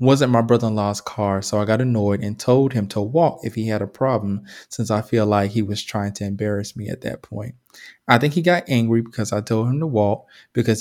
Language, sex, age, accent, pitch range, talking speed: English, male, 20-39, American, 110-150 Hz, 240 wpm